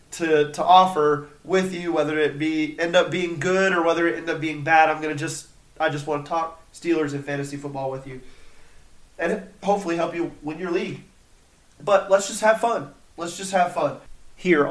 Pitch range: 150-175 Hz